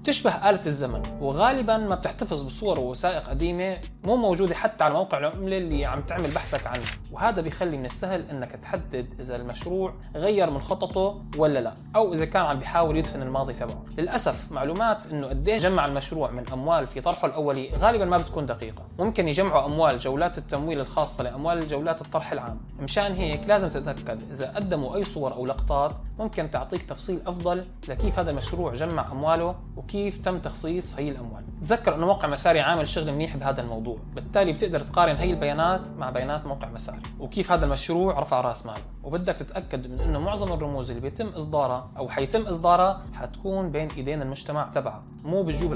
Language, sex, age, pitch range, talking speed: Arabic, male, 20-39, 135-185 Hz, 175 wpm